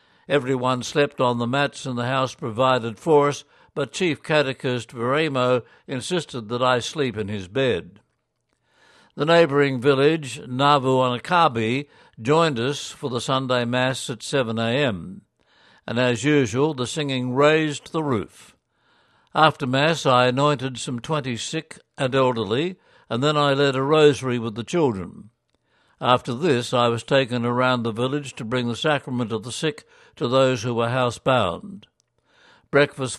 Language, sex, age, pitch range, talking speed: English, male, 60-79, 125-145 Hz, 150 wpm